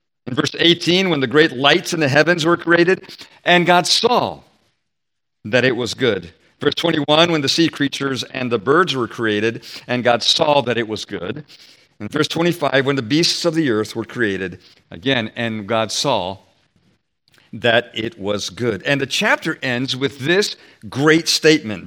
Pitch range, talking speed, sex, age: 130-175 Hz, 175 wpm, male, 50-69